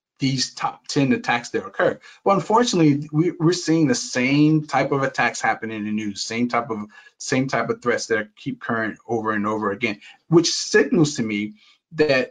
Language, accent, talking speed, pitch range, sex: English, American, 185 wpm, 120-150 Hz, male